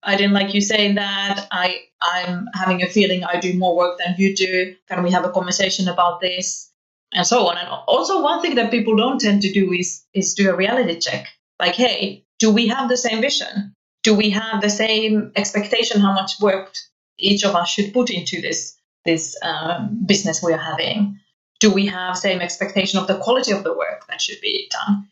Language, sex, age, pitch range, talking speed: English, female, 30-49, 185-220 Hz, 215 wpm